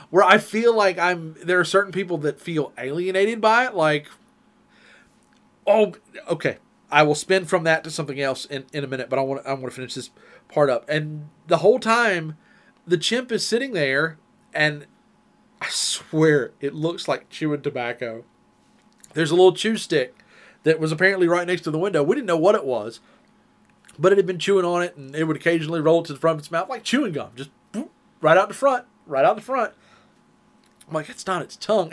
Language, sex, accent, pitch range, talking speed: English, male, American, 150-210 Hz, 210 wpm